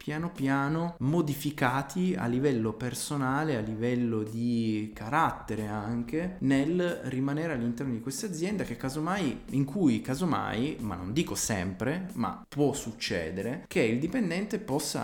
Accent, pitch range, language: native, 110-140 Hz, Italian